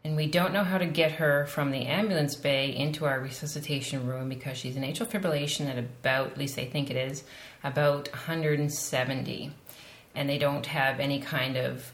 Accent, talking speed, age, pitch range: American, 190 wpm, 30-49, 135-175 Hz